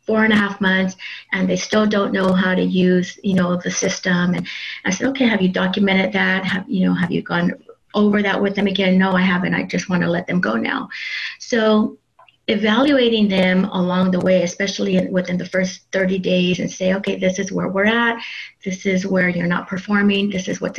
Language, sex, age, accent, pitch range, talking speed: English, female, 30-49, American, 180-205 Hz, 215 wpm